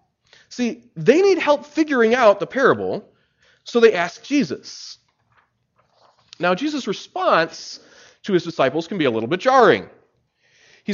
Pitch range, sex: 200-315 Hz, male